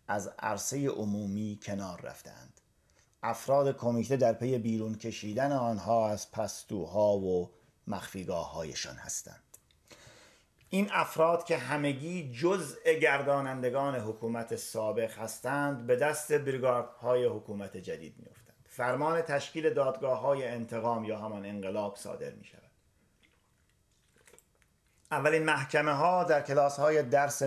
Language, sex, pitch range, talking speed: Persian, male, 110-145 Hz, 105 wpm